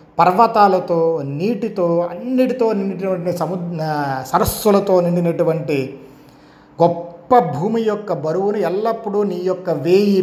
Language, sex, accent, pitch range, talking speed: Telugu, male, native, 160-205 Hz, 90 wpm